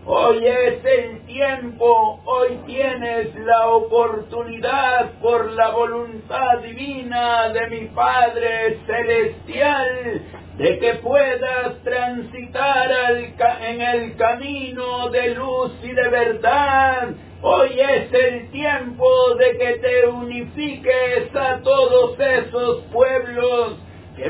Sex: male